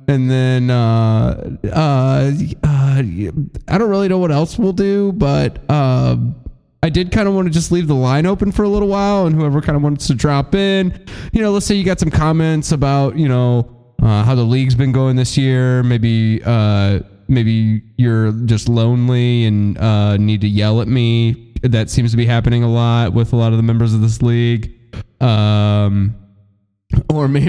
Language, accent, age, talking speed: English, American, 20-39, 195 wpm